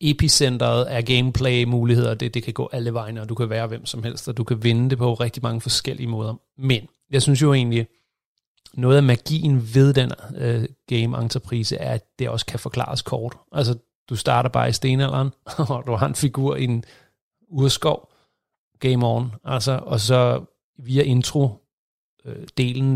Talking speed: 175 wpm